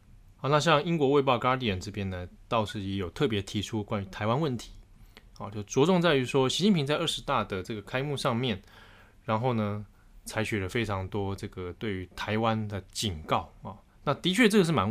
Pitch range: 100-130 Hz